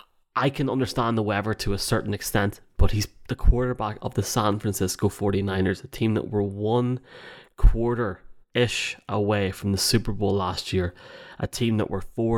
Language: English